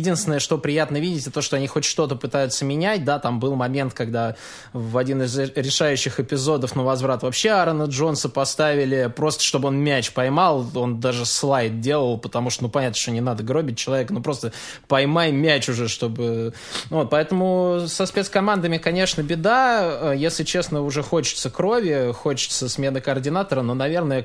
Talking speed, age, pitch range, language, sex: 170 wpm, 20-39, 120-150 Hz, Russian, male